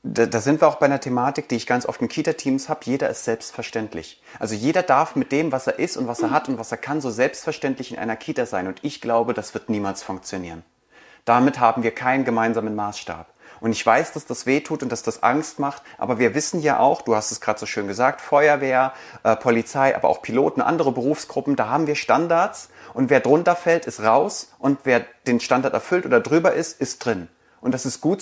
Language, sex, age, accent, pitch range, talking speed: German, male, 30-49, German, 120-160 Hz, 230 wpm